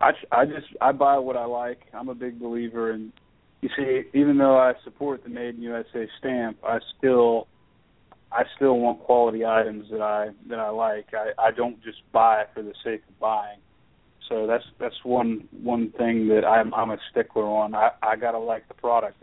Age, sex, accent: 30-49, male, American